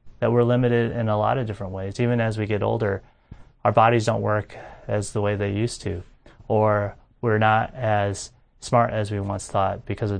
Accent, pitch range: American, 105-125 Hz